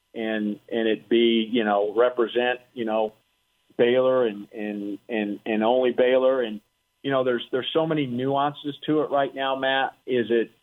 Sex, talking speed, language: male, 175 wpm, English